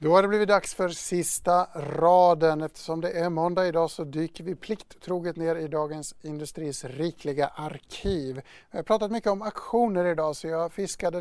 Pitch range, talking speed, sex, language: 155-185 Hz, 175 wpm, male, English